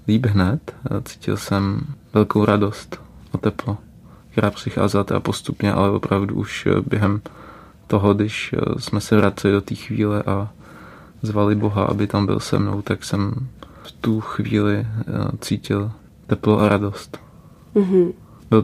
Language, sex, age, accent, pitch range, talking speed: Czech, male, 20-39, native, 100-110 Hz, 135 wpm